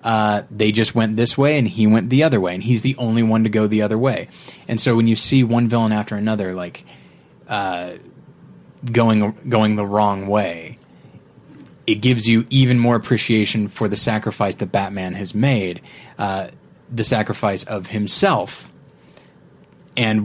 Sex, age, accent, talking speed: male, 20-39, American, 170 wpm